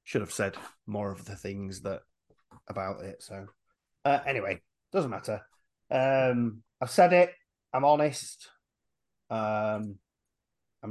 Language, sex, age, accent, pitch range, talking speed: English, male, 30-49, British, 110-170 Hz, 125 wpm